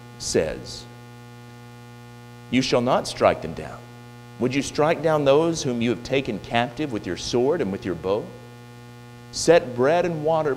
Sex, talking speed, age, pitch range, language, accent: male, 160 wpm, 40-59, 115-120 Hz, English, American